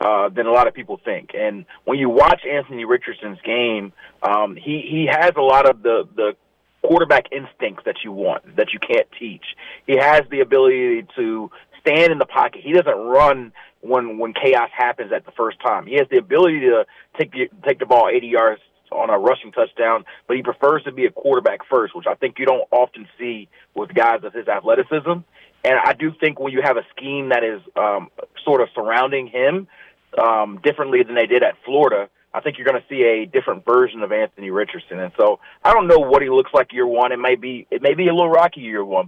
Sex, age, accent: male, 30-49, American